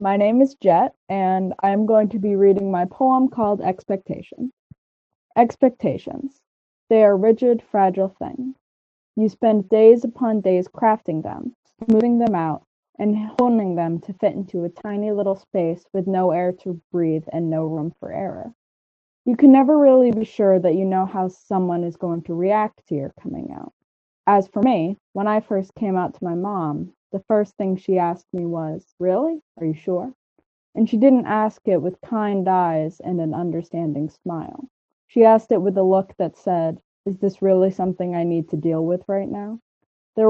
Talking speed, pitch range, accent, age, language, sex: 185 wpm, 180-225 Hz, American, 20-39, English, female